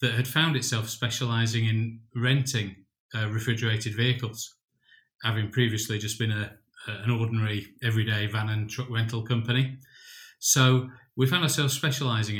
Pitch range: 110-130 Hz